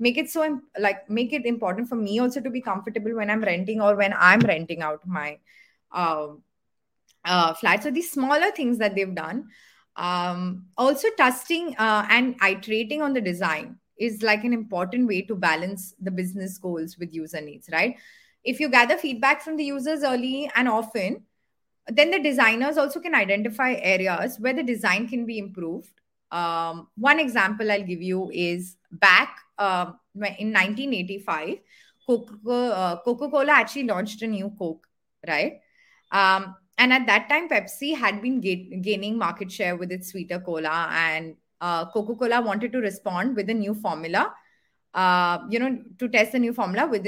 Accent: native